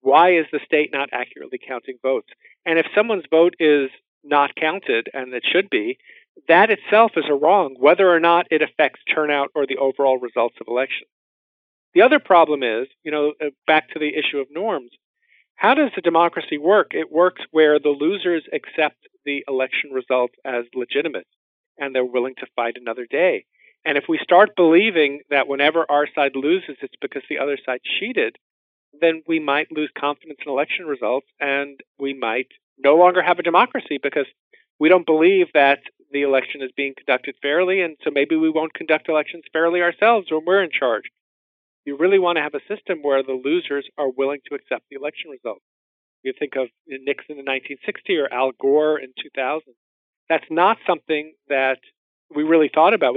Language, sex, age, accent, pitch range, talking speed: English, male, 50-69, American, 135-175 Hz, 185 wpm